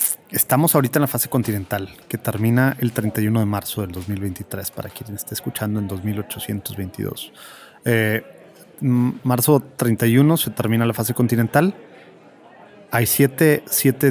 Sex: male